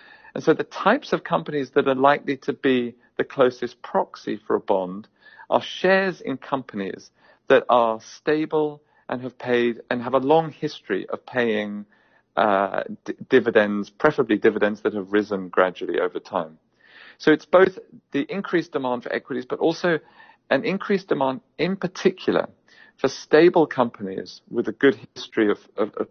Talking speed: 160 wpm